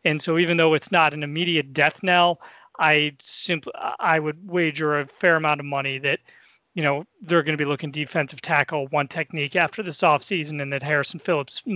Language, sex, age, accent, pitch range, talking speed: English, male, 30-49, American, 150-190 Hz, 205 wpm